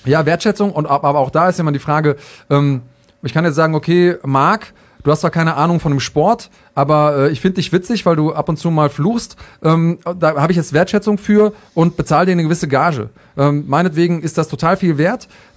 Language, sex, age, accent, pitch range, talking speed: German, male, 30-49, German, 135-170 Hz, 230 wpm